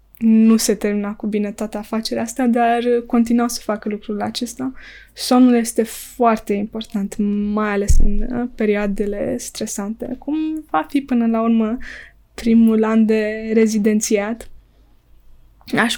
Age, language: 20-39, Romanian